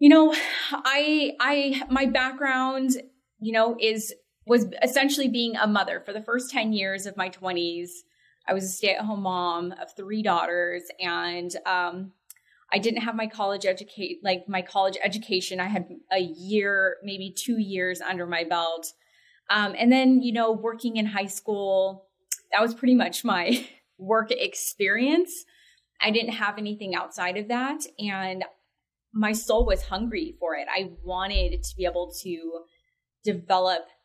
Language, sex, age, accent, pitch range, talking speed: English, female, 20-39, American, 175-230 Hz, 155 wpm